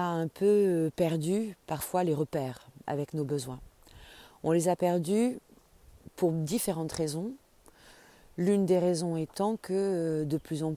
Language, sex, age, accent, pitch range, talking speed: French, female, 30-49, French, 150-180 Hz, 130 wpm